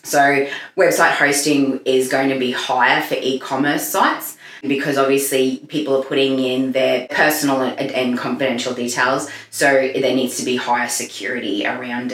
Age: 20-39